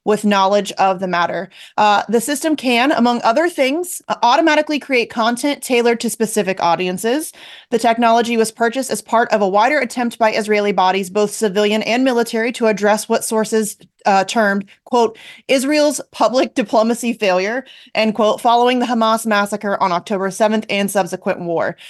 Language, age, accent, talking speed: English, 30-49, American, 160 wpm